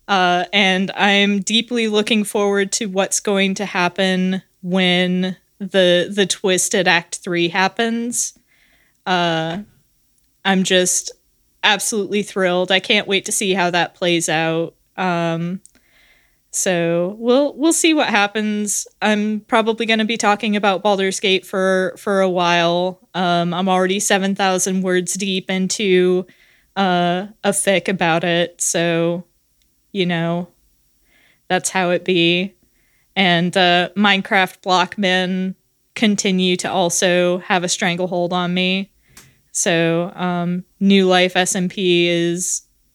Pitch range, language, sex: 175-200 Hz, English, female